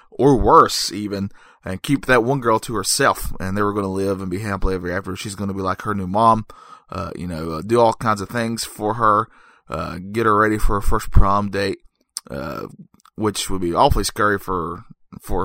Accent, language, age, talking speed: American, English, 20-39, 220 wpm